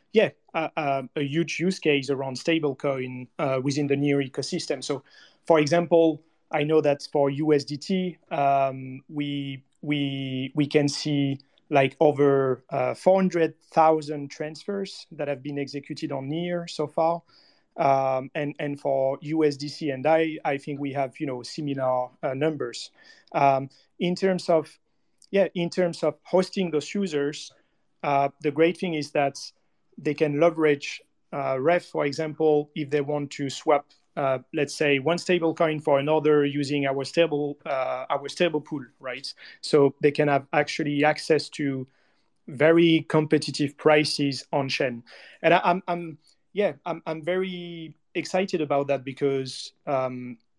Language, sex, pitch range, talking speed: English, male, 140-165 Hz, 155 wpm